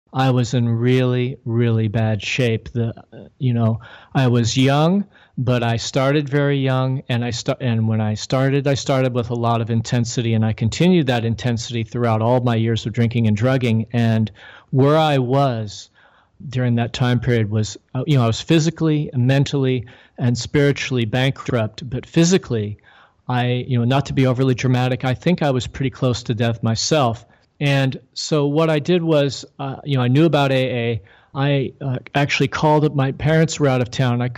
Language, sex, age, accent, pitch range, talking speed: English, male, 40-59, American, 115-135 Hz, 185 wpm